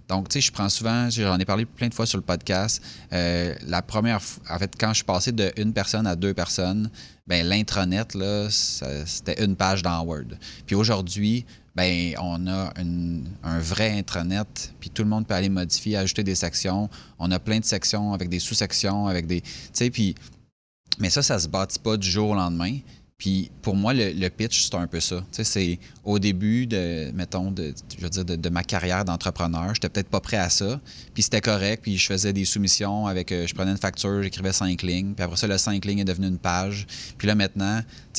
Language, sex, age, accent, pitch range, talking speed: French, male, 30-49, Canadian, 90-105 Hz, 225 wpm